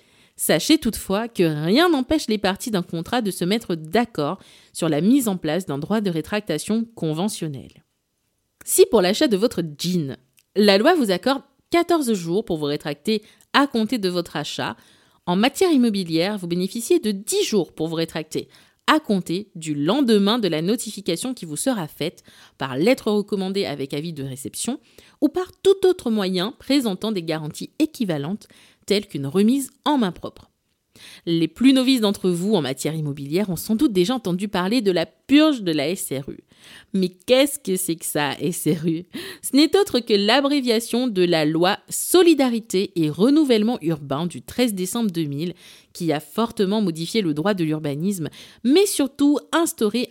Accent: French